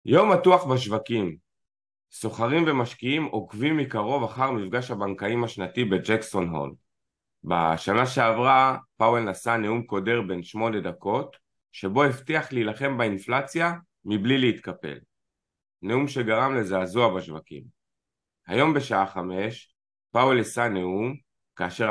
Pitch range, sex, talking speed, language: 95-130 Hz, male, 105 wpm, Hebrew